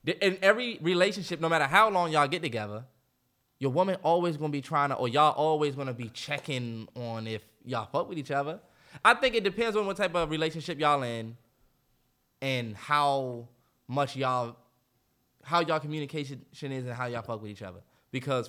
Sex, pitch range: male, 130-205 Hz